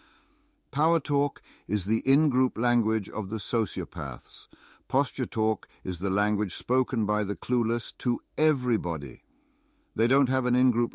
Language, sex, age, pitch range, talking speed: English, male, 60-79, 85-120 Hz, 135 wpm